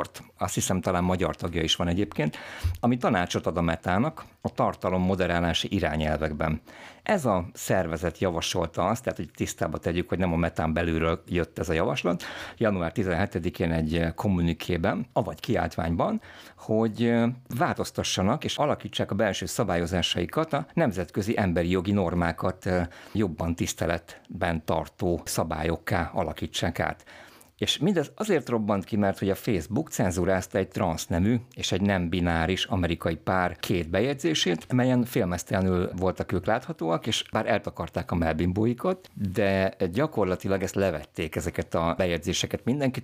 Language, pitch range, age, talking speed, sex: Hungarian, 85-105 Hz, 50-69, 135 wpm, male